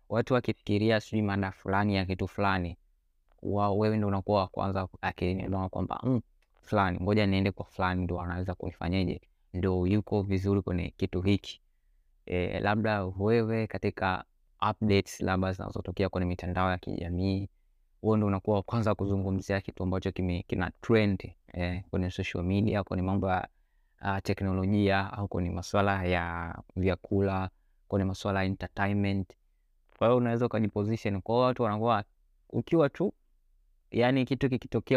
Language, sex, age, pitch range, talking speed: Swahili, male, 20-39, 95-110 Hz, 135 wpm